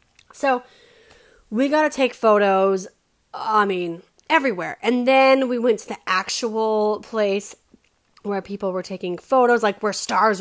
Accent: American